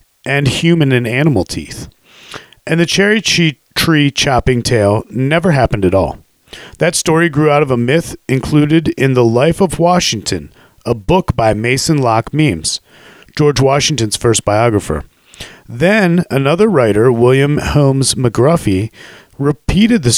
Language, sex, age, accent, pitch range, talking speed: English, male, 40-59, American, 110-155 Hz, 135 wpm